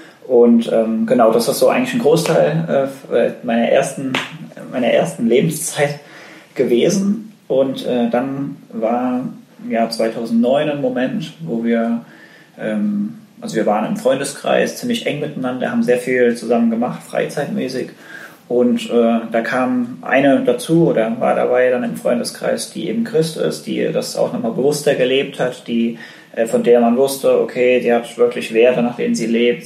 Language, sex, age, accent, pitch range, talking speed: German, male, 20-39, German, 115-195 Hz, 160 wpm